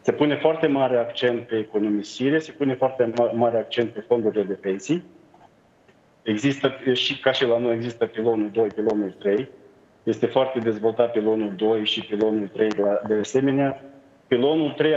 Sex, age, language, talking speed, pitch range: male, 40-59, Romanian, 165 wpm, 115-135 Hz